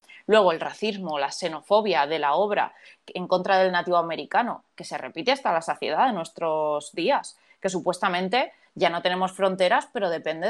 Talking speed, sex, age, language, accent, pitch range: 170 wpm, female, 20-39, Spanish, Spanish, 180-230 Hz